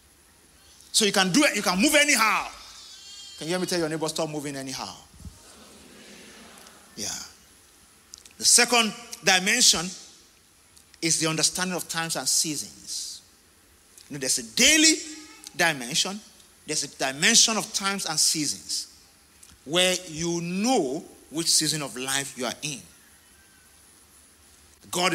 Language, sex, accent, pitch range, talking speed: English, male, Nigerian, 120-205 Hz, 125 wpm